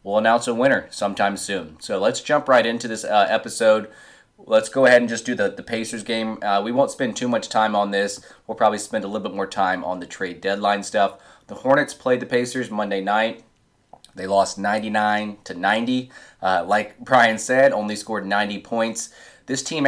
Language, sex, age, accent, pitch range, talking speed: English, male, 20-39, American, 100-120 Hz, 205 wpm